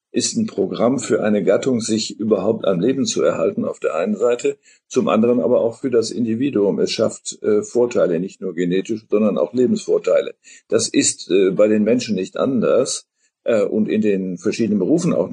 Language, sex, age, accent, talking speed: German, male, 50-69, German, 190 wpm